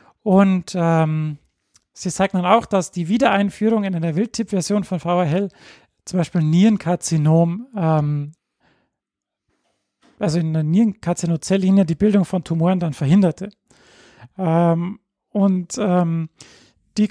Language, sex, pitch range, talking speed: German, male, 170-205 Hz, 110 wpm